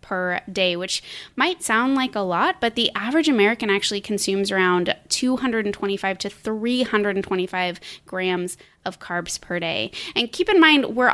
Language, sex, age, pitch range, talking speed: English, female, 20-39, 185-235 Hz, 150 wpm